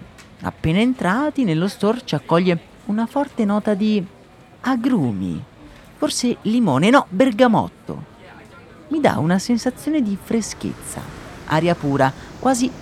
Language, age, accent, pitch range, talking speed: Italian, 40-59, native, 160-230 Hz, 110 wpm